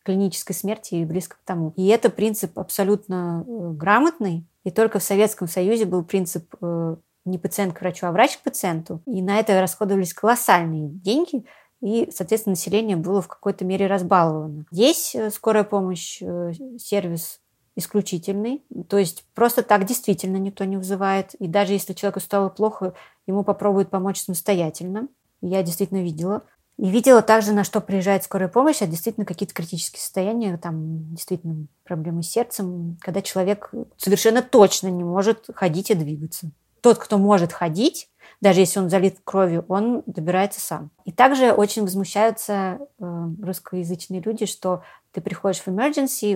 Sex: female